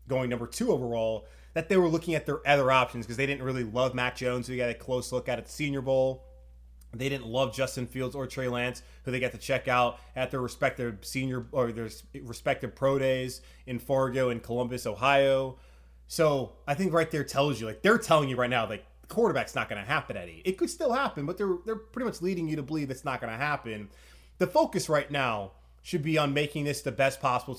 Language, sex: English, male